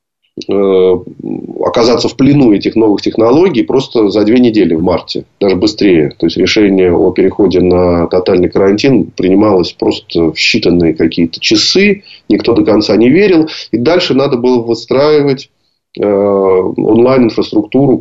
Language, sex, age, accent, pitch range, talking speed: Russian, male, 30-49, native, 105-135 Hz, 135 wpm